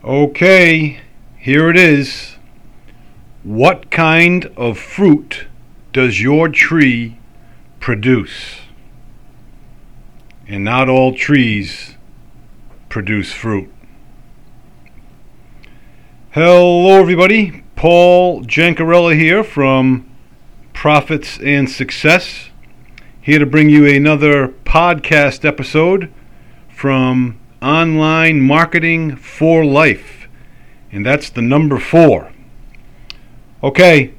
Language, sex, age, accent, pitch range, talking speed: English, male, 50-69, American, 115-150 Hz, 80 wpm